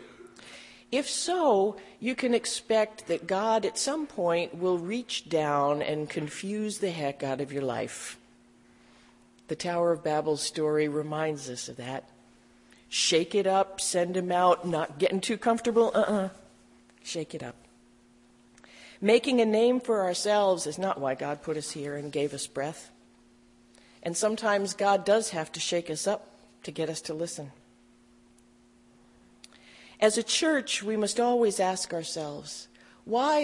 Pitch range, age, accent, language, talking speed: 120-200 Hz, 50-69, American, English, 150 wpm